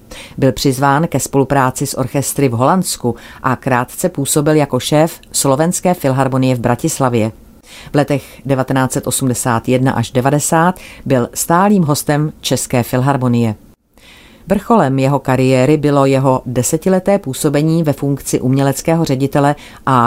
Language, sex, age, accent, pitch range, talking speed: Czech, female, 40-59, native, 125-145 Hz, 115 wpm